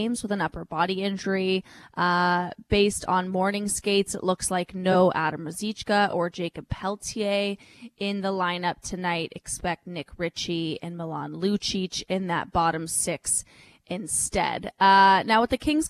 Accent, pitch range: American, 180-205 Hz